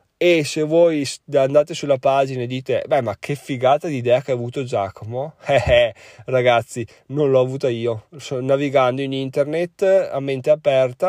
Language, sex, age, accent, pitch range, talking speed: Italian, male, 20-39, native, 115-150 Hz, 175 wpm